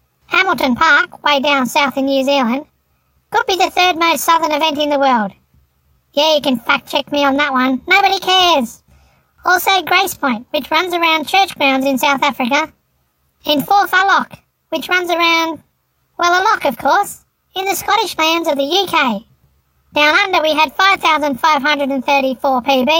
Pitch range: 275-340 Hz